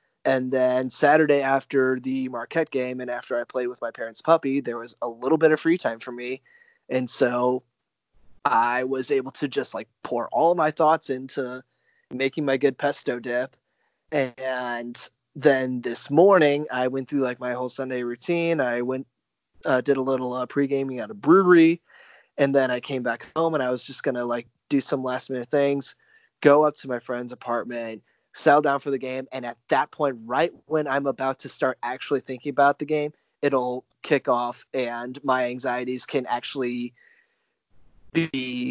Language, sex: English, male